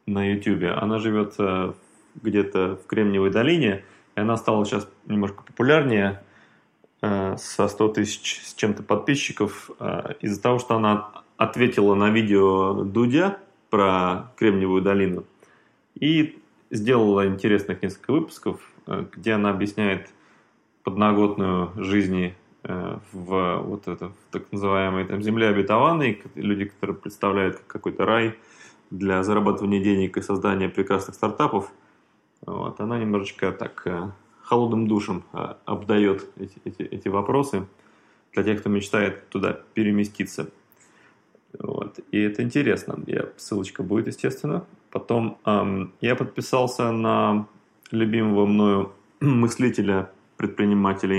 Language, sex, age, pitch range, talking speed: Russian, male, 20-39, 95-110 Hz, 110 wpm